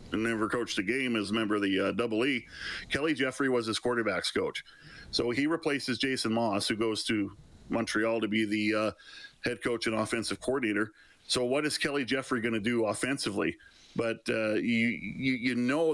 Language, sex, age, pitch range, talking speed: English, male, 40-59, 110-125 Hz, 195 wpm